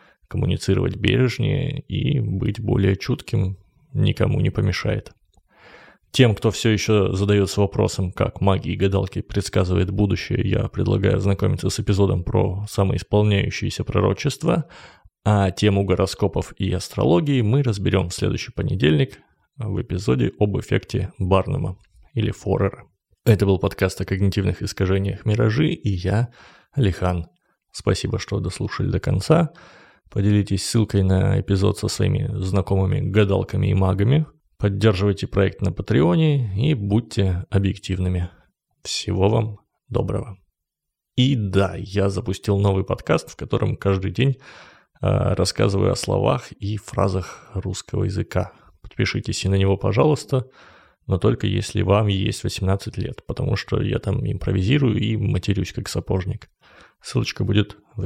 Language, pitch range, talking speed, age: Russian, 95-115 Hz, 125 wpm, 20-39